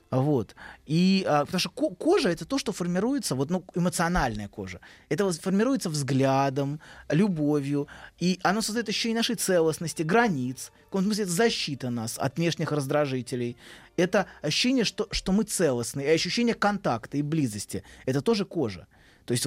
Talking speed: 150 wpm